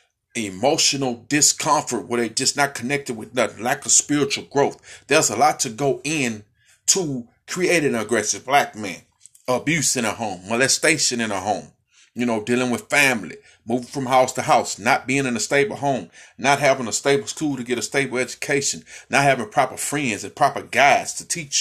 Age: 30-49